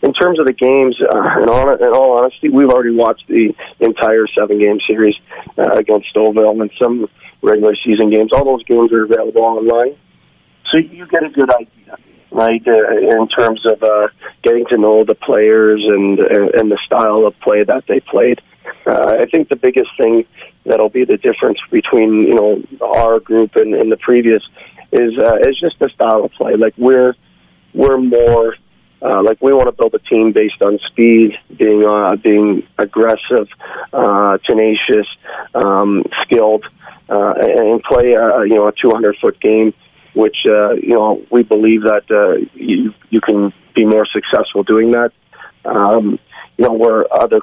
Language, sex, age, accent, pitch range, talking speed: English, male, 40-59, American, 110-135 Hz, 175 wpm